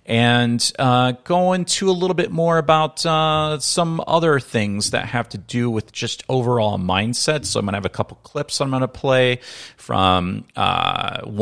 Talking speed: 185 wpm